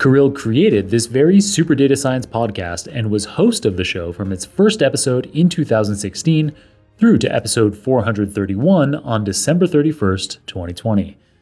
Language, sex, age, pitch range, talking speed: English, male, 30-49, 105-150 Hz, 145 wpm